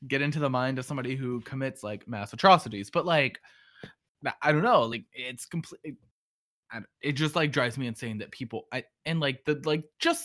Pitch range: 115-155 Hz